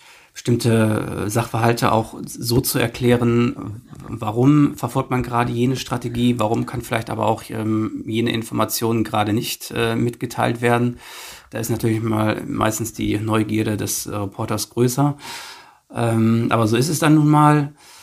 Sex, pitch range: male, 110-120 Hz